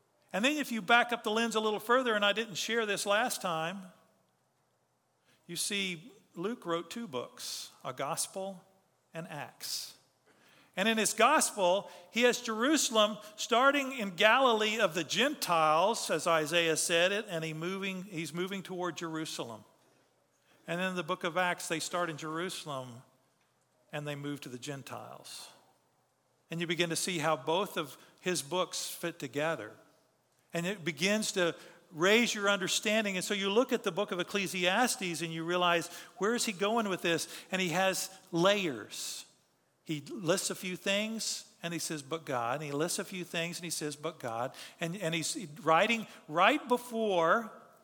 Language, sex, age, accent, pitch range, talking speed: English, male, 50-69, American, 165-215 Hz, 170 wpm